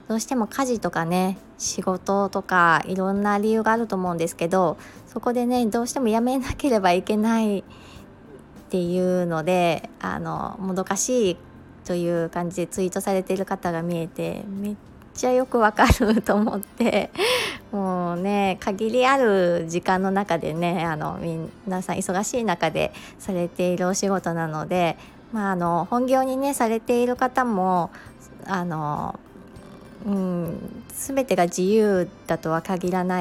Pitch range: 180-225 Hz